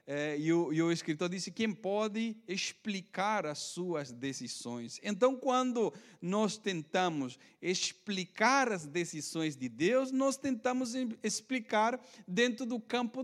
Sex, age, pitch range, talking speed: male, 40-59, 185-260 Hz, 125 wpm